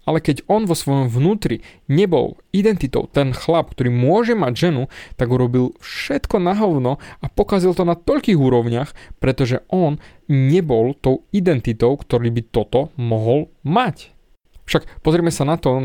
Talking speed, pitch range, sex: 150 wpm, 125-160 Hz, male